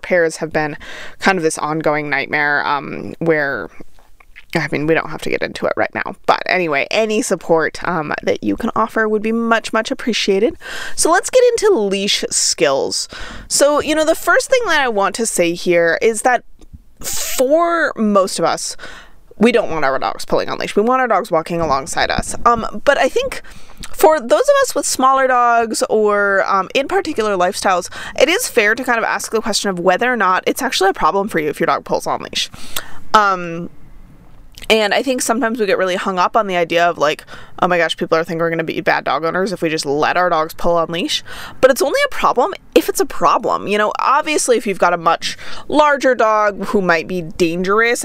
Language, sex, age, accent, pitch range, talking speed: English, female, 20-39, American, 175-255 Hz, 215 wpm